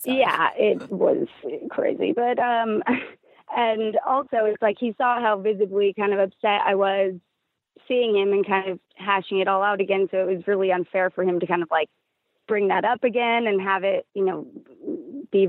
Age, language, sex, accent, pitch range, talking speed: 20-39, English, female, American, 195-255 Hz, 195 wpm